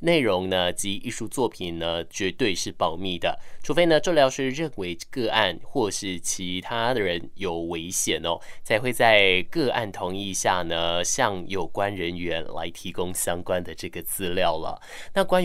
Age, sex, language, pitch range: 20-39, male, Chinese, 90-120 Hz